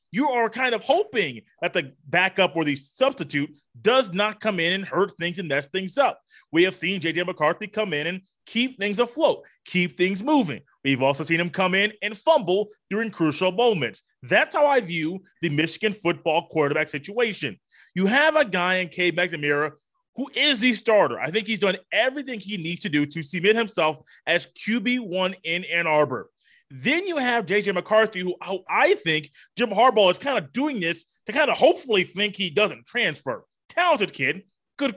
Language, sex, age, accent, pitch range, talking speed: English, male, 30-49, American, 165-225 Hz, 190 wpm